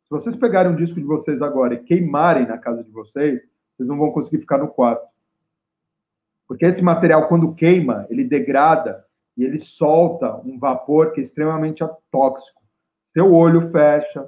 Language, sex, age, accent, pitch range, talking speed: Portuguese, male, 40-59, Brazilian, 145-180 Hz, 170 wpm